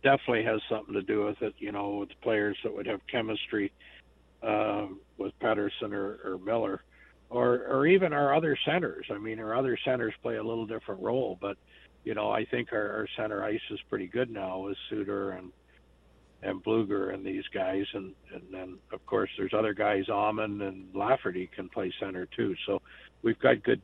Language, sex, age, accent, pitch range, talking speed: English, male, 60-79, American, 95-120 Hz, 195 wpm